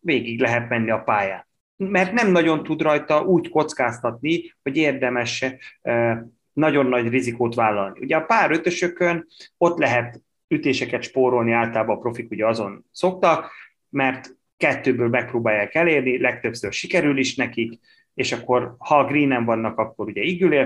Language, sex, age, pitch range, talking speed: Hungarian, male, 30-49, 115-155 Hz, 140 wpm